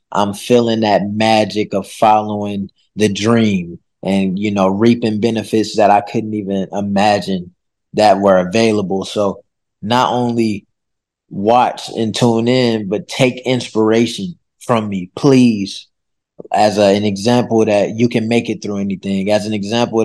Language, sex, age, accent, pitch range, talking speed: English, male, 20-39, American, 105-120 Hz, 140 wpm